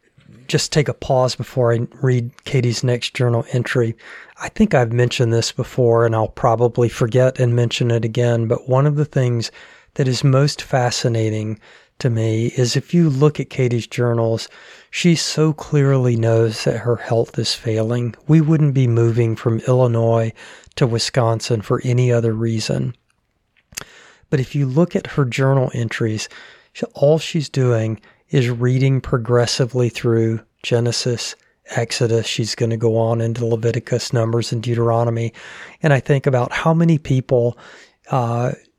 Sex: male